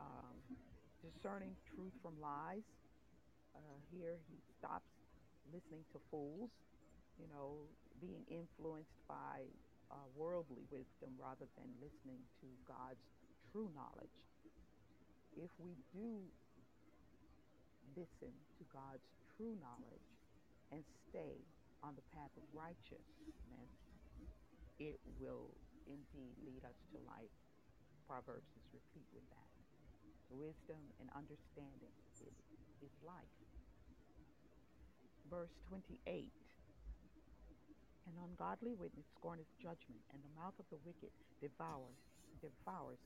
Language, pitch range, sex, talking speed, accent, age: English, 140-180 Hz, female, 100 wpm, American, 40-59